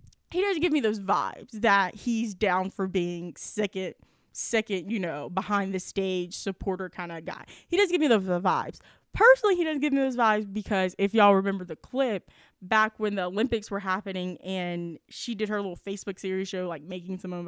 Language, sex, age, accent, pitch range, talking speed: English, female, 10-29, American, 185-235 Hz, 215 wpm